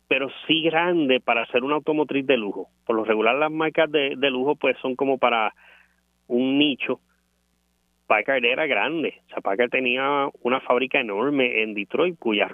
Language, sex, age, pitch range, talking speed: Spanish, male, 30-49, 105-135 Hz, 170 wpm